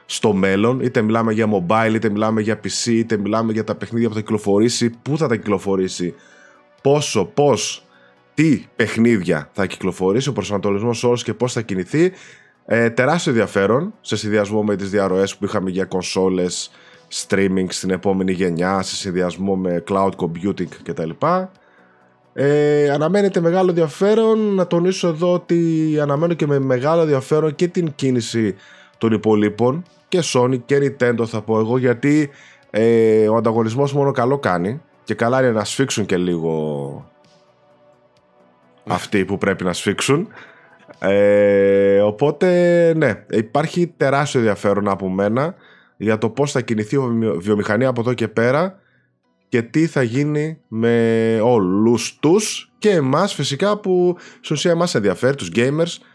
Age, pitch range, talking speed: 20-39, 100-145 Hz, 145 wpm